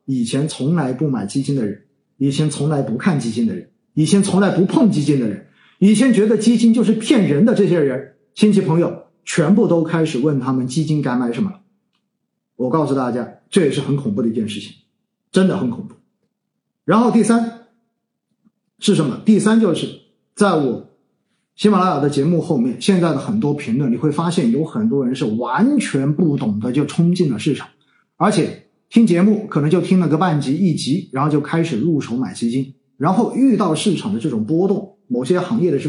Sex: male